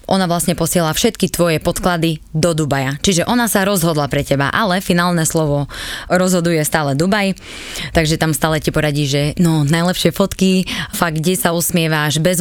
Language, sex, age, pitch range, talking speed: Slovak, female, 20-39, 165-200 Hz, 165 wpm